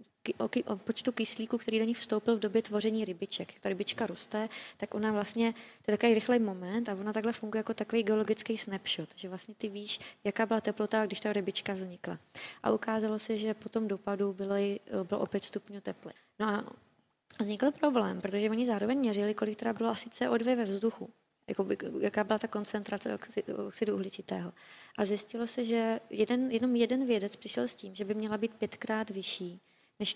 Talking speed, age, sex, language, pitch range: 180 wpm, 20-39, female, Czech, 205-230 Hz